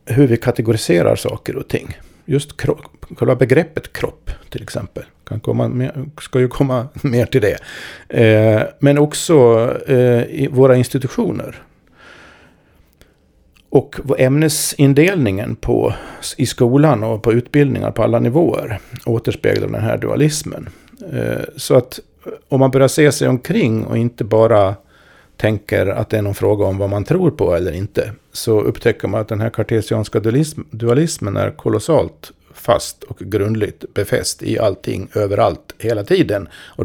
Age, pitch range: 50-69, 110-140 Hz